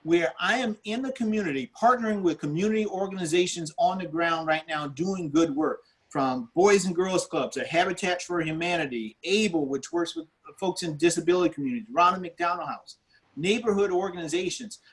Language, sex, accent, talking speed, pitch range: English, male, American, 155 wpm, 165-215 Hz